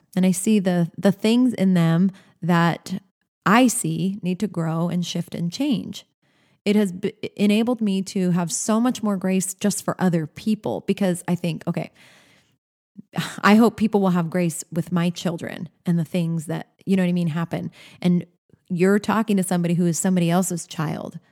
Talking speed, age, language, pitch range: 185 wpm, 20-39, English, 170-205 Hz